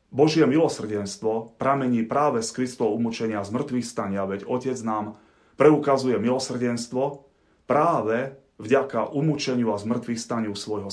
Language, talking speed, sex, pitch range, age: Slovak, 110 wpm, male, 105-130 Hz, 30-49